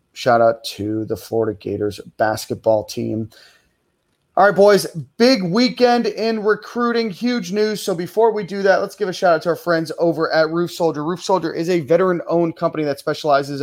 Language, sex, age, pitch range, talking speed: English, male, 30-49, 135-170 Hz, 185 wpm